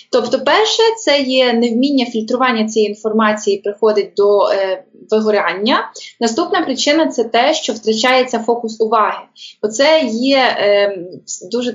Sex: female